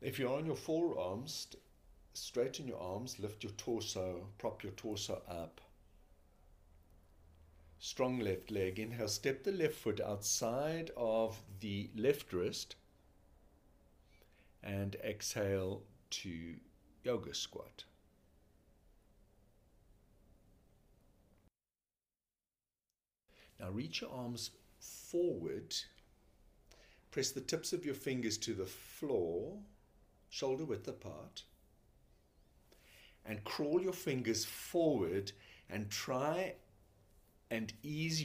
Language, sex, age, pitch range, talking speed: English, male, 60-79, 90-110 Hz, 95 wpm